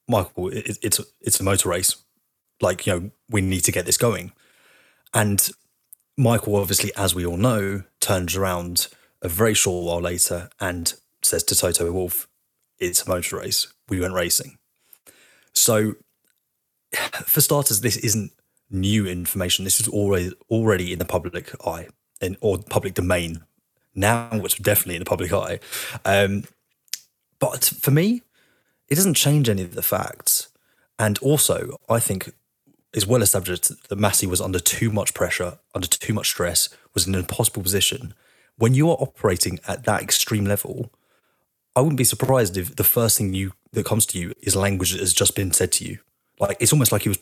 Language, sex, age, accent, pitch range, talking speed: English, male, 30-49, British, 95-115 Hz, 175 wpm